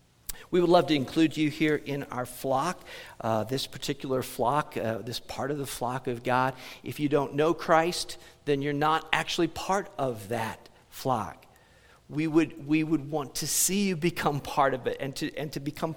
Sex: male